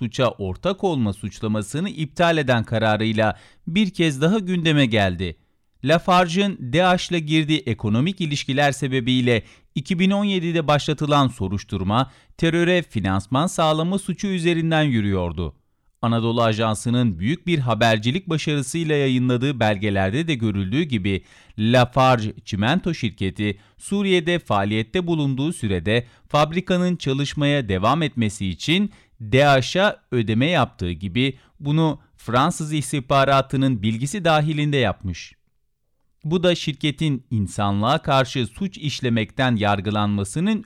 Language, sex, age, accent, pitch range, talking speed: Turkish, male, 40-59, native, 110-160 Hz, 100 wpm